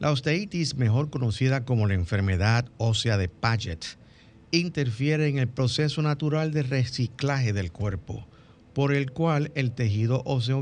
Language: Spanish